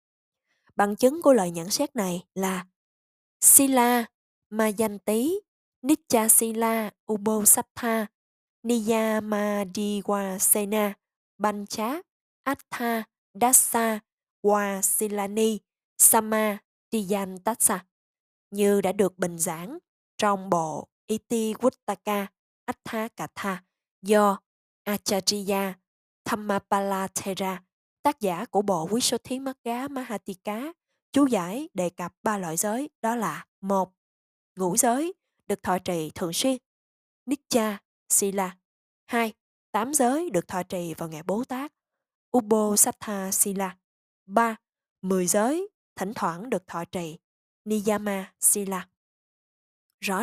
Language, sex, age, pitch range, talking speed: Vietnamese, female, 20-39, 190-235 Hz, 100 wpm